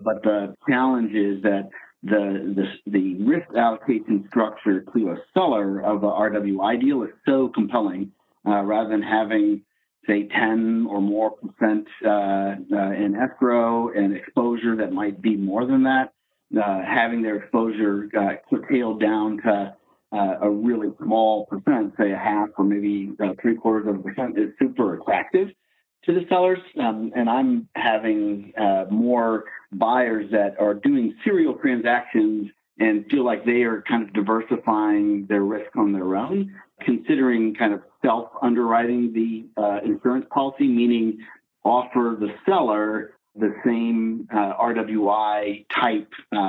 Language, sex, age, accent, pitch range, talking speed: English, male, 50-69, American, 105-120 Hz, 145 wpm